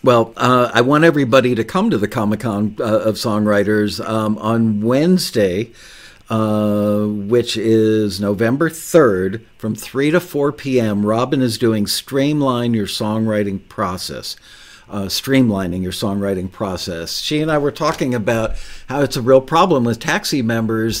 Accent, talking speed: American, 150 wpm